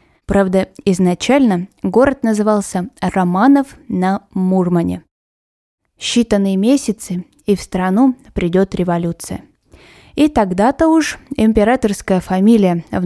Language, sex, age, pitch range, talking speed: Russian, female, 20-39, 185-245 Hz, 90 wpm